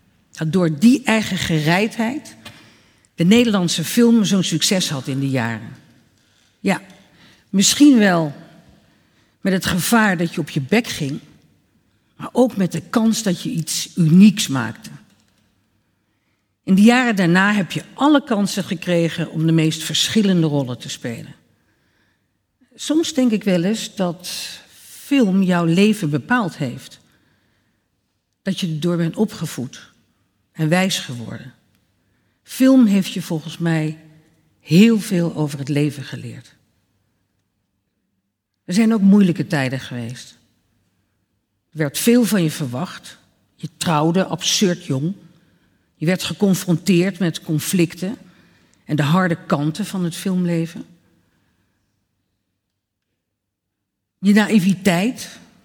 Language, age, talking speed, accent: Dutch, 50-69, 120 wpm, Dutch